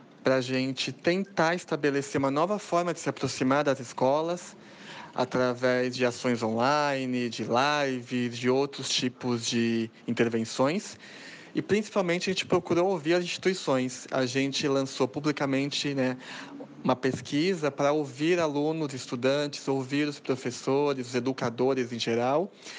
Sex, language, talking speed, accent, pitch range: male, Portuguese, 130 wpm, Brazilian, 130-170 Hz